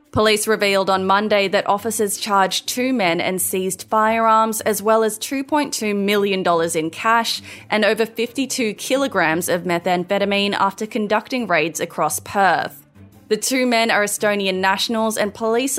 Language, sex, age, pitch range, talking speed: English, female, 20-39, 180-220 Hz, 145 wpm